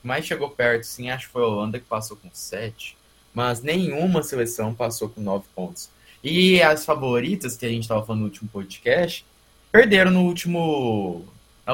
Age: 20-39